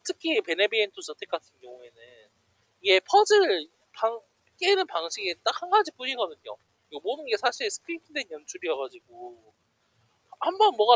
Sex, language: male, Korean